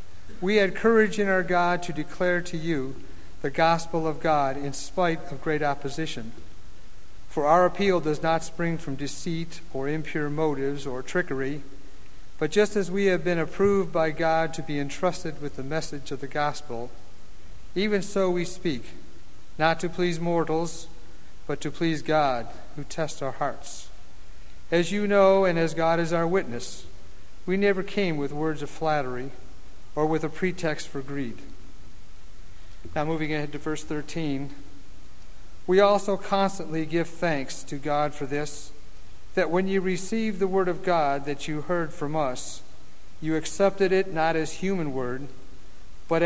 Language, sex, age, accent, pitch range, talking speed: English, male, 50-69, American, 135-170 Hz, 160 wpm